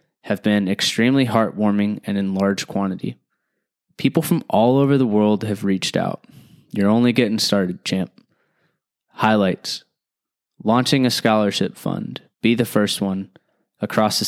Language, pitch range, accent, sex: English, 100-120 Hz, American, male